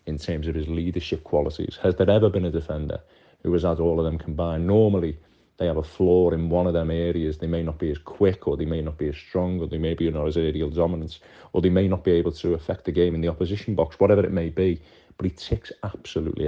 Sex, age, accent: male, 30-49, British